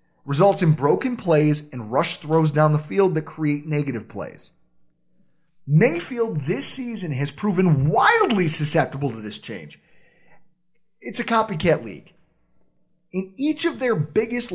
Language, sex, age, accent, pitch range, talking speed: English, male, 30-49, American, 145-200 Hz, 135 wpm